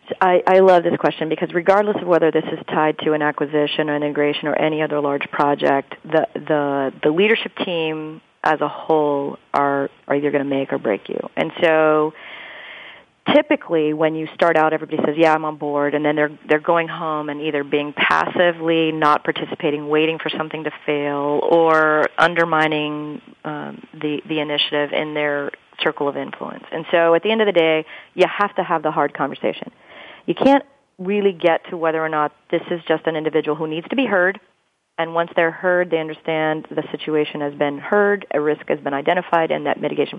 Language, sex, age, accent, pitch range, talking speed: English, female, 40-59, American, 150-170 Hz, 200 wpm